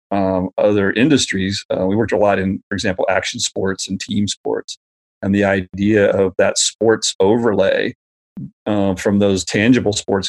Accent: American